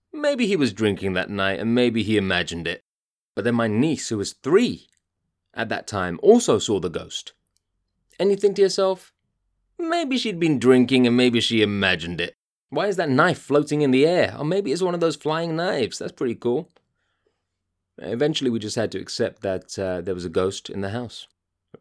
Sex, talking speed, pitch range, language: male, 205 wpm, 100-140 Hz, English